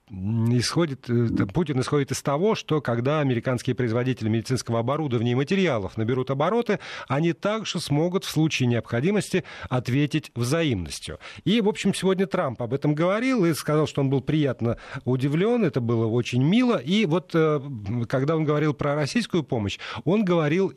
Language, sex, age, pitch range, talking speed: Russian, male, 40-59, 120-160 Hz, 150 wpm